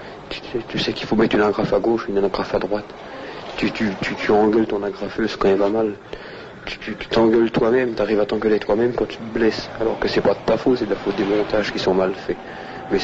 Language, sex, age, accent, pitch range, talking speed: French, male, 50-69, French, 100-115 Hz, 260 wpm